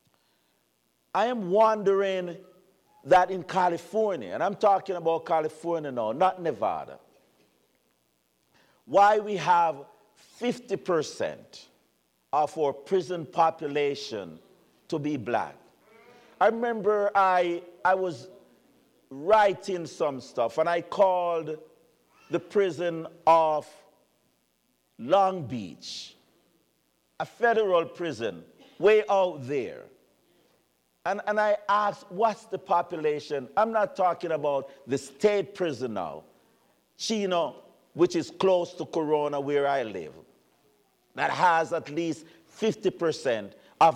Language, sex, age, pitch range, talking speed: English, male, 50-69, 150-195 Hz, 105 wpm